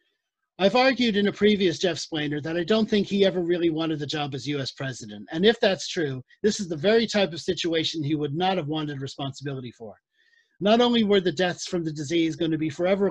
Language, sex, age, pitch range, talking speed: English, male, 40-59, 150-195 Hz, 230 wpm